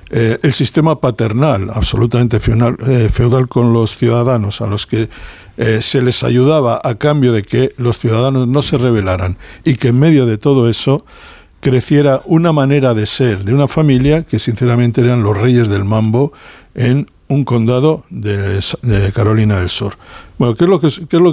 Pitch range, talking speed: 110-135 Hz, 170 wpm